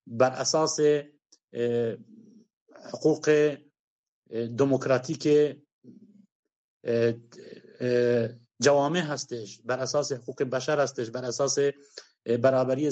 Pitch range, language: 125-160 Hz, Persian